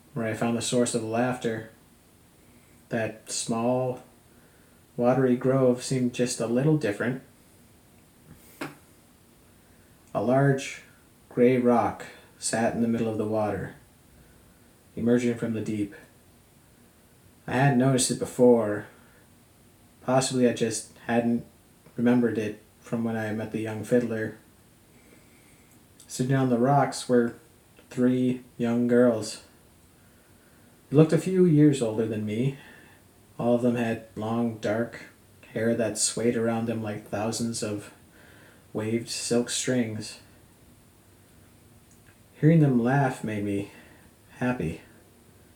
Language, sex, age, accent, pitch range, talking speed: English, male, 30-49, American, 110-125 Hz, 115 wpm